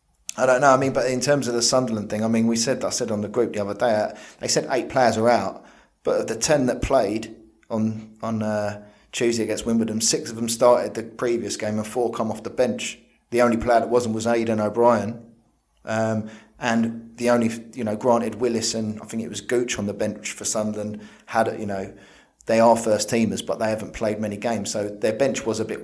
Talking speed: 230 wpm